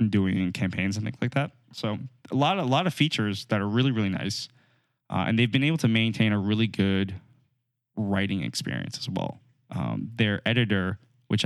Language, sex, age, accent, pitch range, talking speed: English, male, 20-39, American, 100-125 Hz, 185 wpm